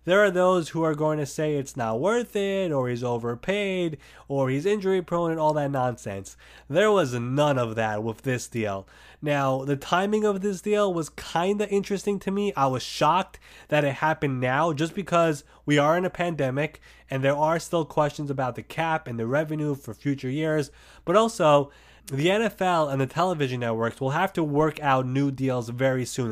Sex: male